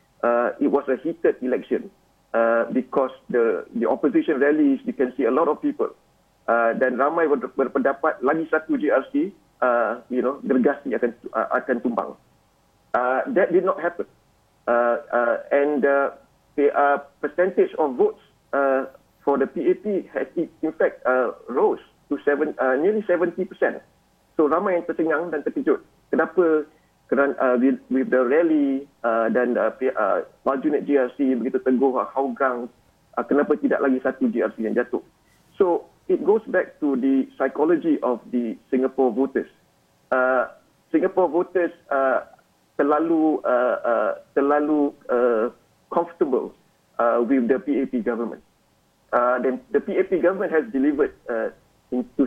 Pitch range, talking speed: 130-180 Hz, 150 wpm